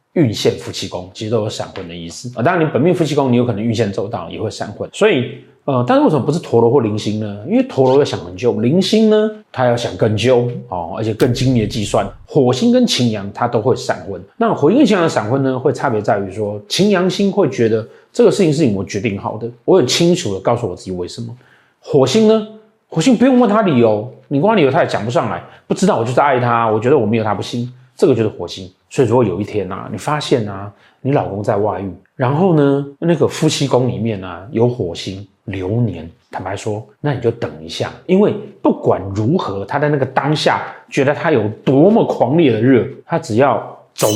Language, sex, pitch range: Chinese, male, 105-150 Hz